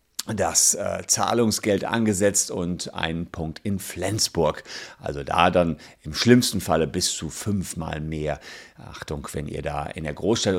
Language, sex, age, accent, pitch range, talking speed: German, male, 50-69, German, 85-105 Hz, 145 wpm